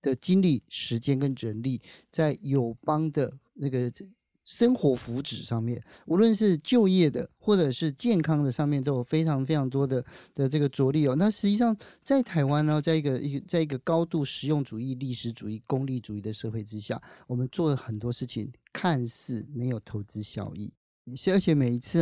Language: Chinese